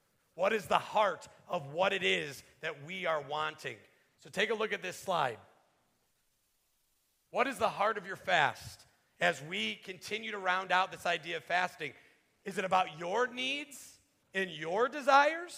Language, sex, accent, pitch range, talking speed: English, male, American, 185-285 Hz, 170 wpm